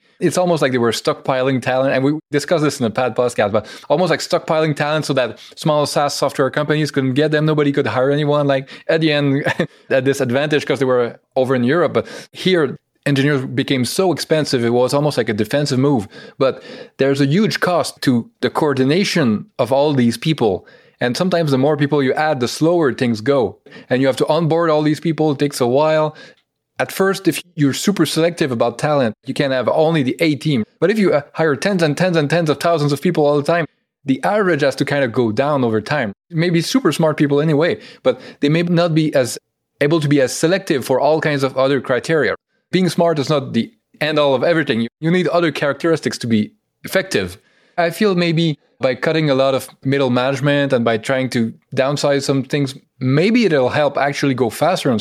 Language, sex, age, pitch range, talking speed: English, male, 20-39, 135-160 Hz, 215 wpm